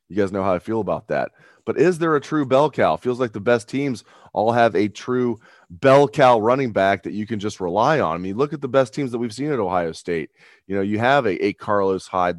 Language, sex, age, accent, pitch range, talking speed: English, male, 30-49, American, 95-130 Hz, 265 wpm